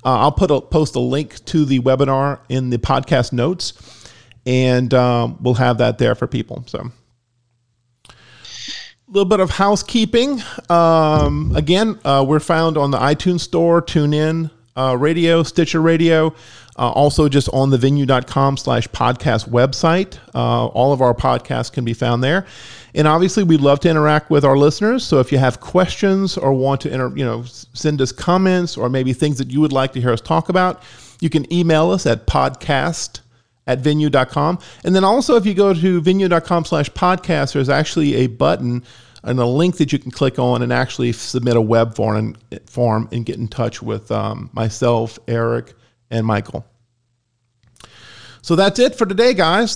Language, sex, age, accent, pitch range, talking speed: English, male, 40-59, American, 120-165 Hz, 175 wpm